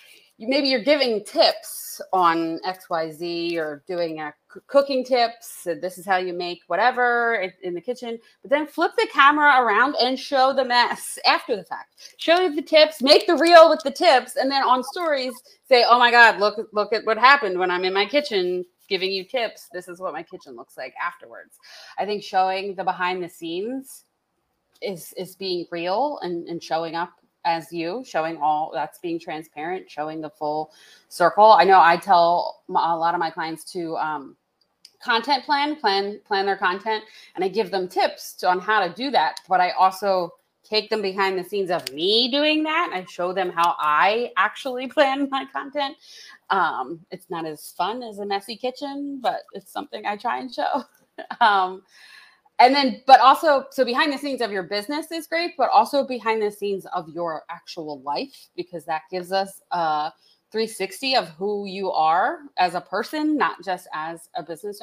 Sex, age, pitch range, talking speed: female, 30-49, 175-275 Hz, 190 wpm